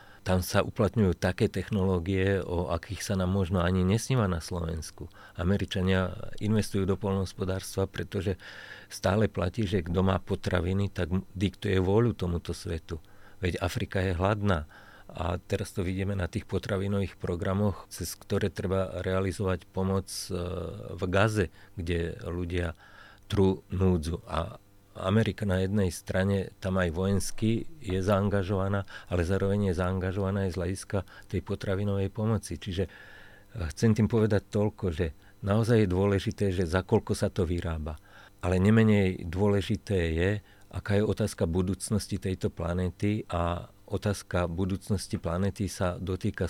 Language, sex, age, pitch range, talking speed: Slovak, male, 40-59, 90-100 Hz, 135 wpm